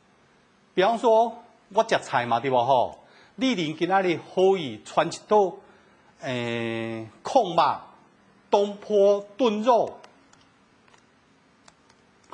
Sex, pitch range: male, 150-220 Hz